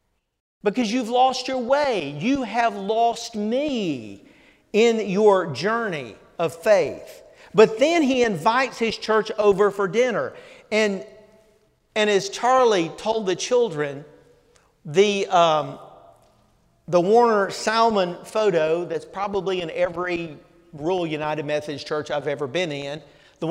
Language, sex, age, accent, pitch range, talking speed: English, male, 50-69, American, 165-230 Hz, 125 wpm